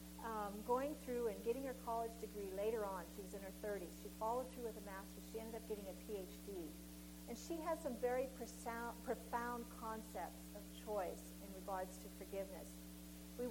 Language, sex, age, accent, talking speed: English, female, 50-69, American, 180 wpm